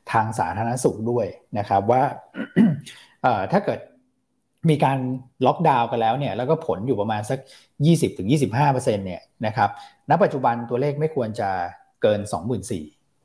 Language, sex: Thai, male